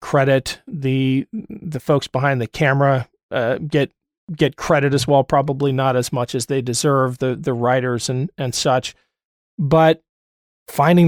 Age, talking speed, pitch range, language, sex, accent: 40-59, 150 wpm, 135-155 Hz, English, male, American